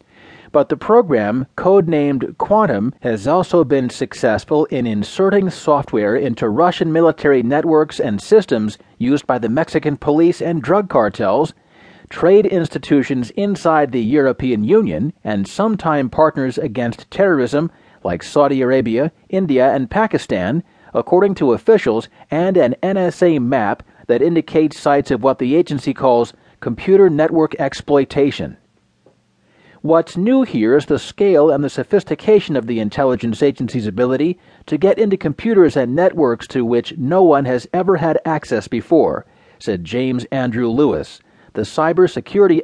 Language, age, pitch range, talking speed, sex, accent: English, 40-59, 130-175 Hz, 135 wpm, male, American